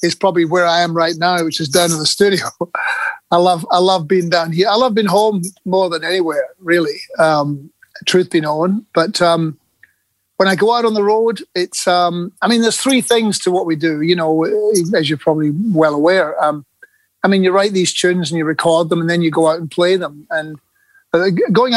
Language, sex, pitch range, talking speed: English, male, 165-205 Hz, 220 wpm